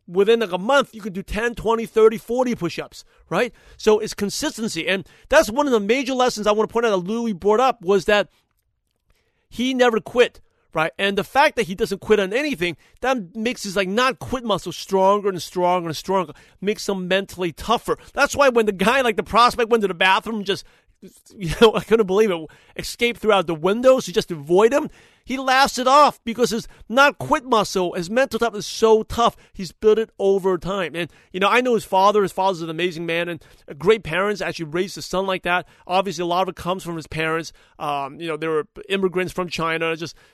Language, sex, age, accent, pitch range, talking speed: English, male, 40-59, American, 175-225 Hz, 225 wpm